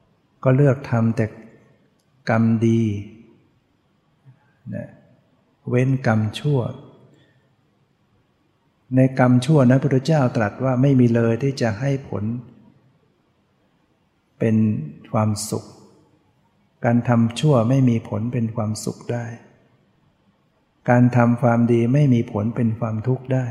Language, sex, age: English, male, 60-79